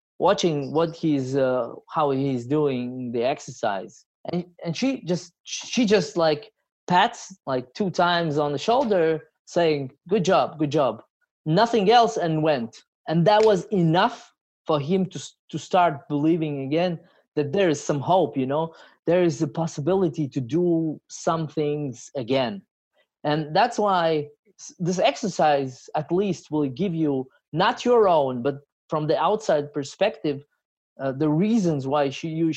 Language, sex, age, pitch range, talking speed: English, male, 20-39, 140-180 Hz, 155 wpm